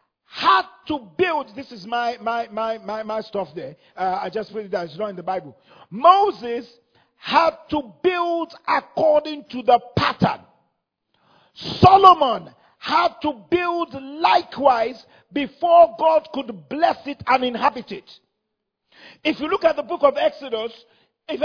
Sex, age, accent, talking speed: male, 50-69, Nigerian, 150 wpm